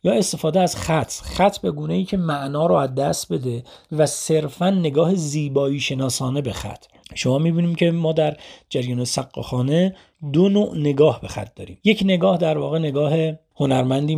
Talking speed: 170 wpm